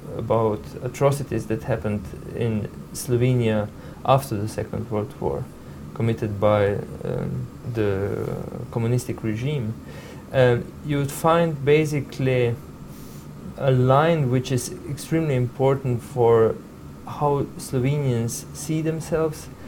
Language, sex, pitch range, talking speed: English, male, 120-140 Hz, 100 wpm